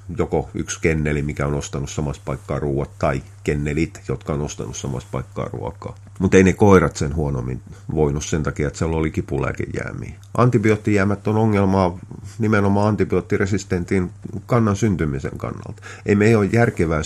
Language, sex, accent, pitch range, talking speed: Finnish, male, native, 80-105 Hz, 150 wpm